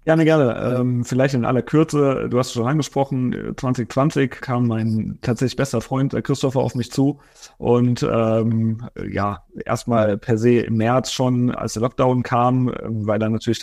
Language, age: German, 30-49